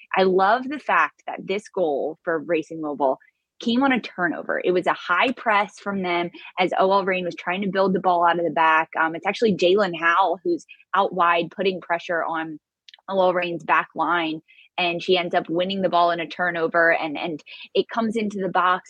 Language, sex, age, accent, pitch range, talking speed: English, female, 20-39, American, 165-195 Hz, 210 wpm